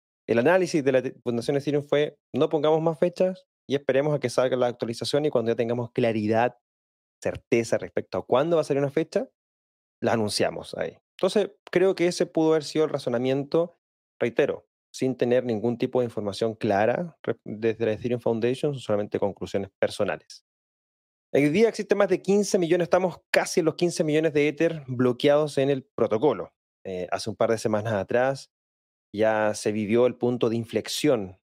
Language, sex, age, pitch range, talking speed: Spanish, male, 20-39, 100-150 Hz, 175 wpm